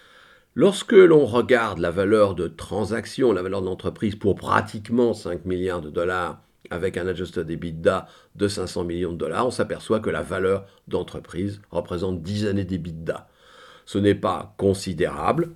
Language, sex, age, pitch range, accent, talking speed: English, male, 50-69, 90-125 Hz, French, 155 wpm